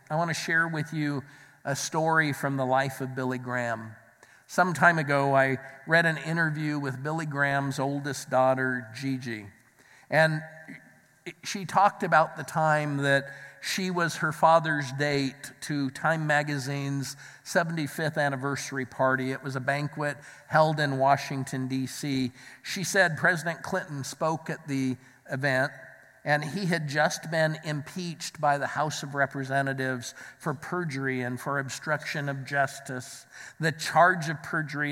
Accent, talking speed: American, 145 wpm